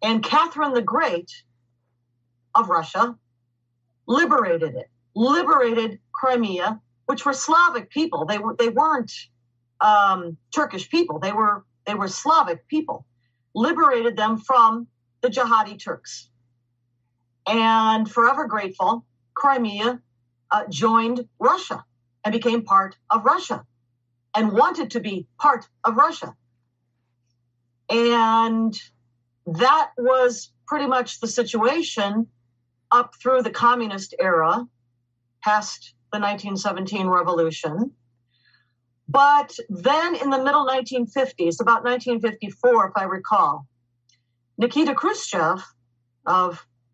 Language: English